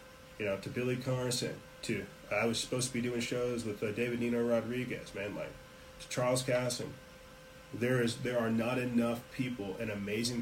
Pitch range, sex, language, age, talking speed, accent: 115-135 Hz, male, English, 30-49, 185 wpm, American